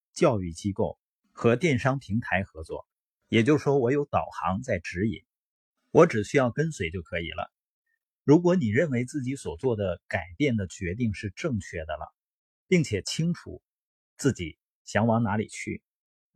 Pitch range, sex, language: 95-145 Hz, male, Chinese